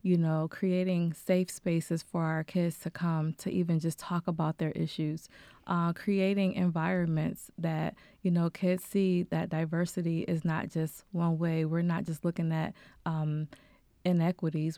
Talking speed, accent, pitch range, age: 160 wpm, American, 165-190 Hz, 20-39